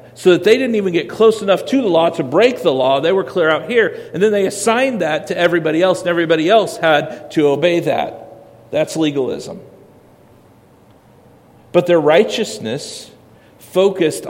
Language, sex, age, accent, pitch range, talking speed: English, male, 50-69, American, 150-210 Hz, 170 wpm